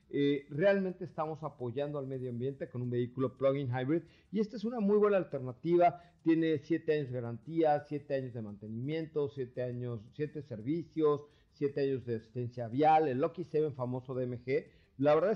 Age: 50-69